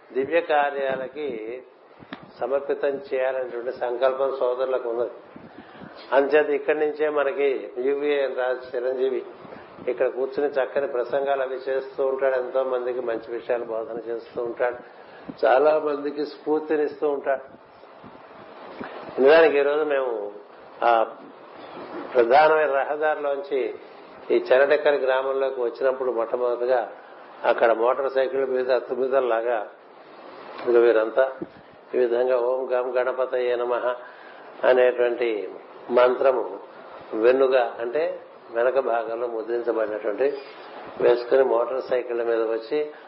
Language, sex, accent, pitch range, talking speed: Telugu, male, native, 120-140 Hz, 90 wpm